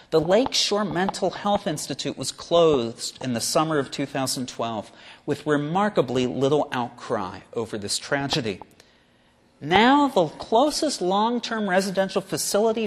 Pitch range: 145-215 Hz